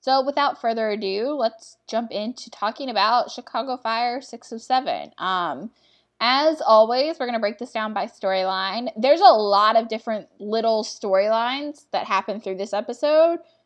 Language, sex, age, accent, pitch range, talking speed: English, female, 10-29, American, 195-250 Hz, 165 wpm